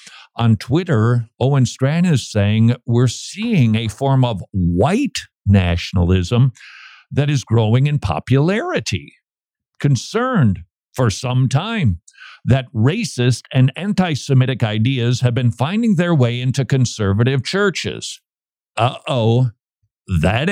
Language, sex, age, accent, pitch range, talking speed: English, male, 50-69, American, 115-150 Hz, 110 wpm